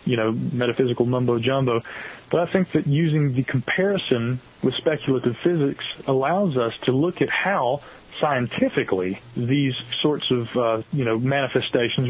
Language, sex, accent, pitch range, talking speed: English, male, American, 120-145 Hz, 140 wpm